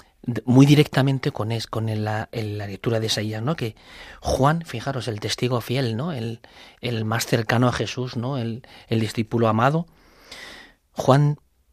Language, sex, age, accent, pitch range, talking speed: Spanish, male, 40-59, Spanish, 110-135 Hz, 155 wpm